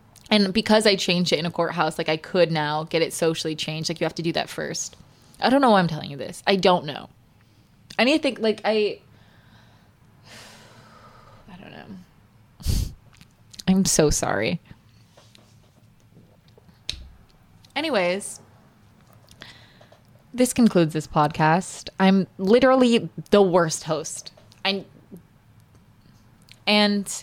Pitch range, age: 160-205 Hz, 20-39